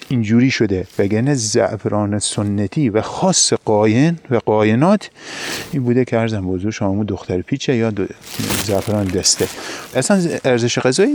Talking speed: 135 wpm